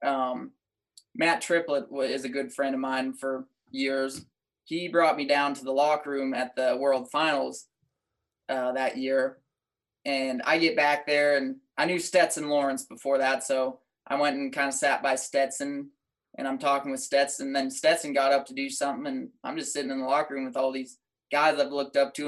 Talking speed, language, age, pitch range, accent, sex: 200 wpm, English, 20-39, 135-155 Hz, American, male